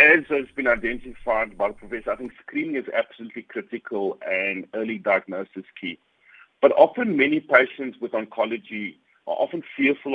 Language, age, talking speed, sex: English, 50-69, 155 wpm, male